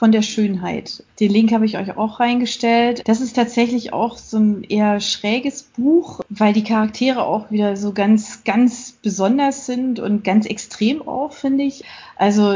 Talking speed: 170 wpm